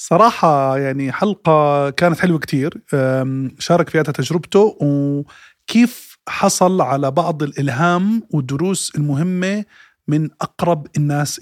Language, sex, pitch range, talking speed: Arabic, male, 135-165 Hz, 100 wpm